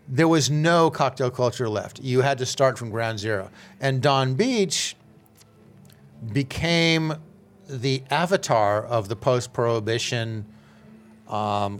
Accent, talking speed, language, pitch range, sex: American, 115 wpm, English, 120-150 Hz, male